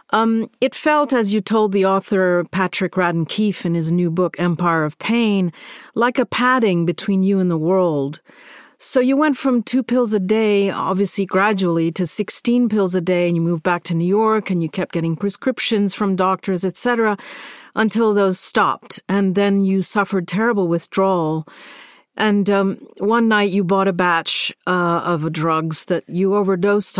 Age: 50-69